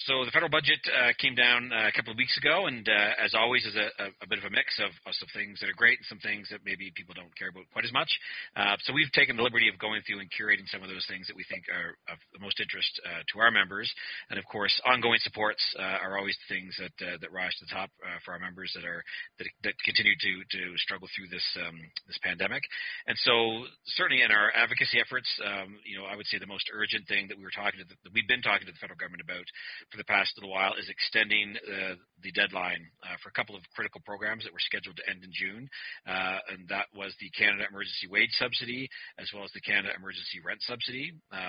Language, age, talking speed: English, 40-59, 255 wpm